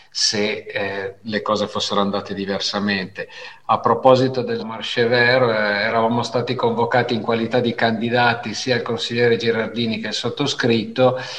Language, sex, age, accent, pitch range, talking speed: Italian, male, 50-69, native, 115-140 Hz, 135 wpm